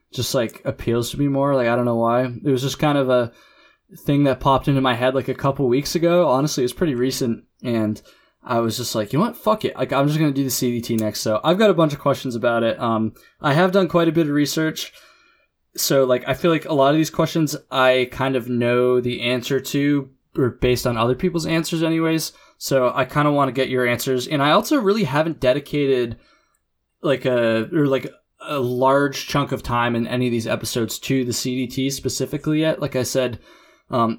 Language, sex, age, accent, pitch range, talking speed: English, male, 20-39, American, 120-145 Hz, 230 wpm